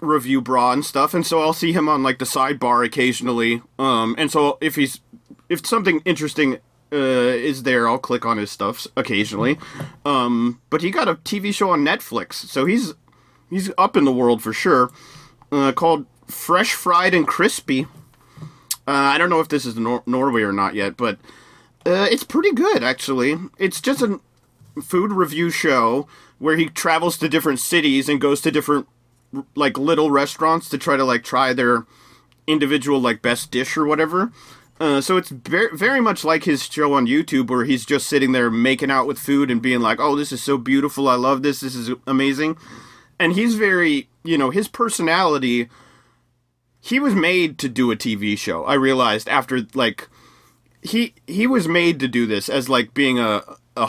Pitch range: 125-165 Hz